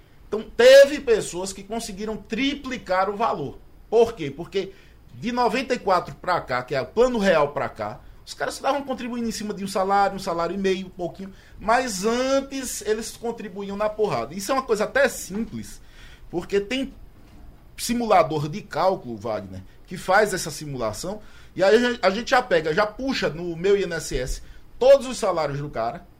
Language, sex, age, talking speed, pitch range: Portuguese, male, 20-39, 170 wpm, 170-230 Hz